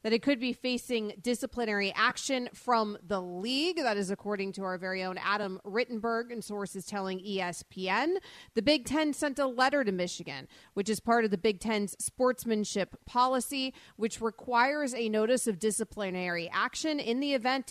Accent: American